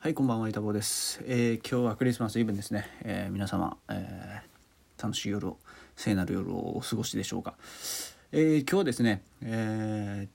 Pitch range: 100-145 Hz